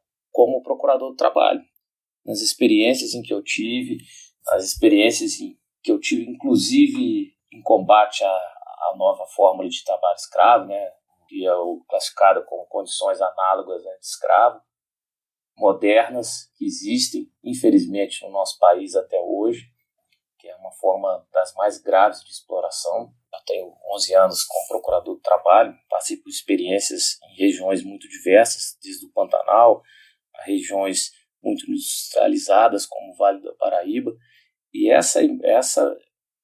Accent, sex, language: Brazilian, male, Portuguese